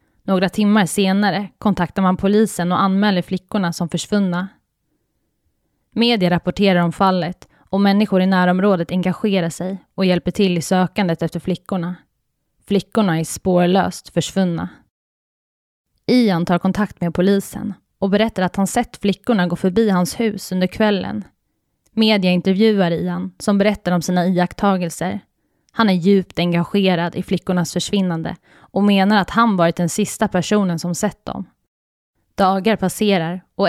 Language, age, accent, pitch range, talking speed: Swedish, 20-39, native, 175-205 Hz, 140 wpm